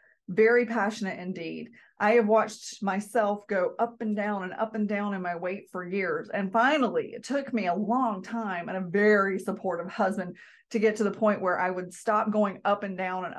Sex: female